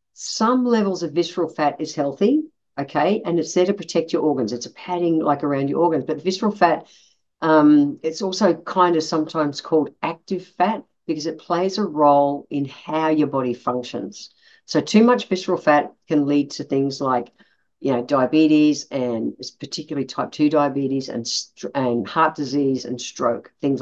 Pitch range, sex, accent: 135-170 Hz, female, Australian